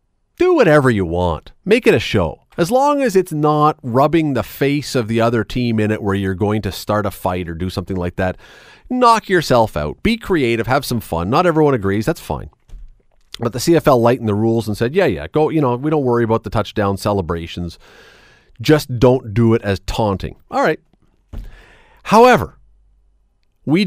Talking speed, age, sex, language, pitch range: 195 wpm, 40-59, male, English, 105-155 Hz